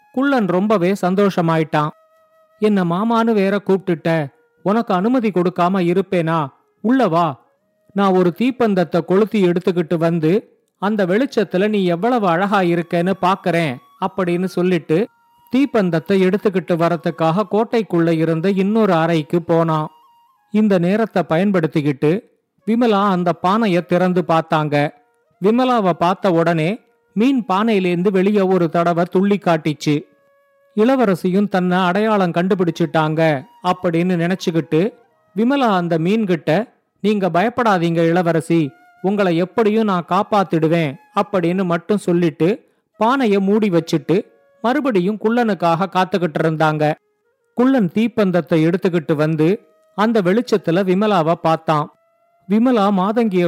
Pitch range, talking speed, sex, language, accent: 170-215 Hz, 100 wpm, male, Tamil, native